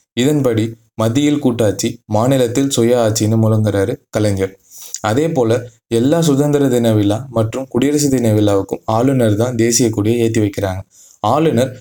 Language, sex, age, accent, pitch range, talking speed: Tamil, male, 20-39, native, 110-130 Hz, 120 wpm